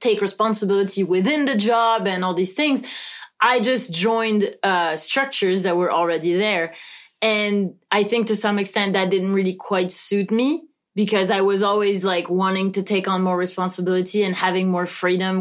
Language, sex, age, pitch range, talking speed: English, female, 20-39, 190-255 Hz, 175 wpm